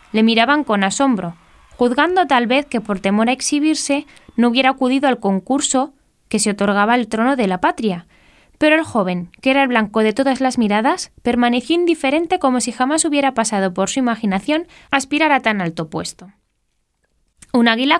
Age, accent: 10-29, Spanish